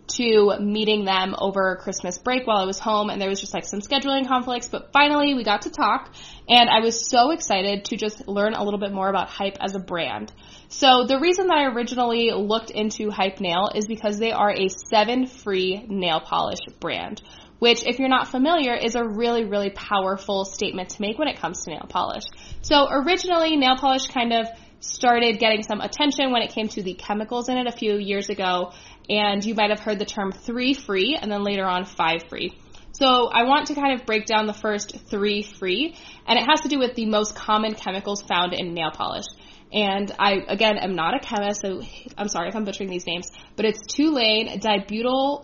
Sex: female